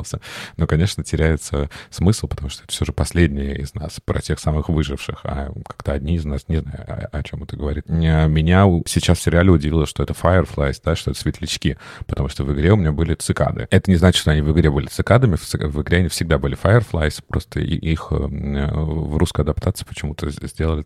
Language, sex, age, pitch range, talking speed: Russian, male, 30-49, 75-90 Hz, 205 wpm